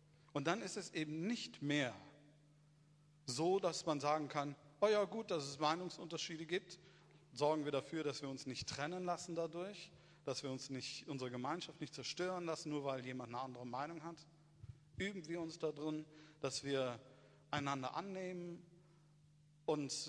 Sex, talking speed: male, 165 wpm